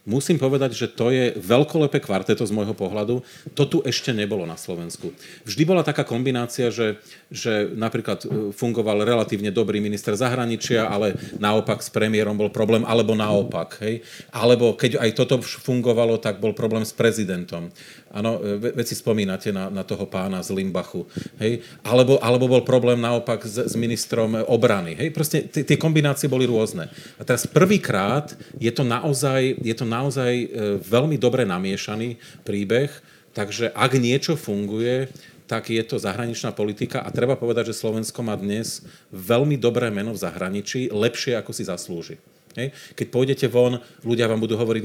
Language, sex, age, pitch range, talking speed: Slovak, male, 40-59, 105-130 Hz, 160 wpm